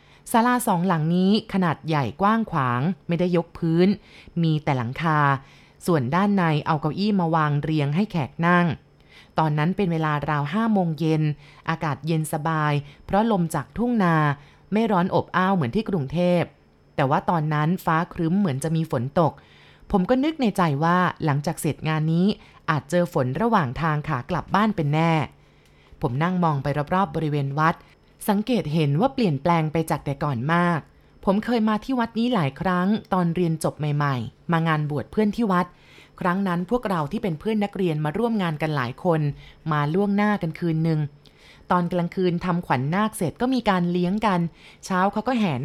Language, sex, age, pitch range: Thai, female, 20-39, 155-190 Hz